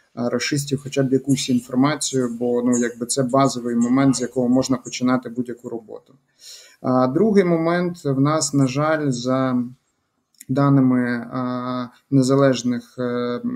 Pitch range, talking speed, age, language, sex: 120-140 Hz, 115 wpm, 30-49, Ukrainian, male